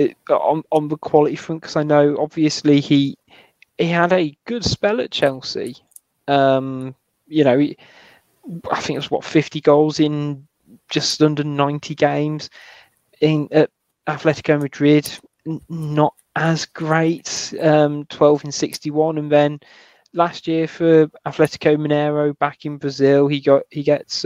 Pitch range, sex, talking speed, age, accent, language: 140-160 Hz, male, 145 wpm, 20-39, British, English